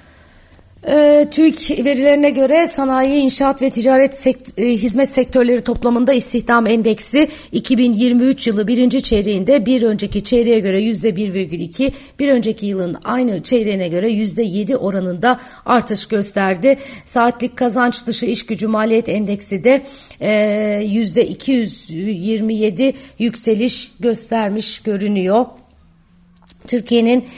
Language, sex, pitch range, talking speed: Turkish, female, 185-245 Hz, 105 wpm